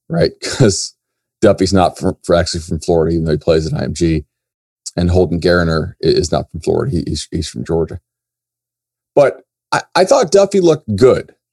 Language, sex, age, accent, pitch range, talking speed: English, male, 40-59, American, 90-120 Hz, 165 wpm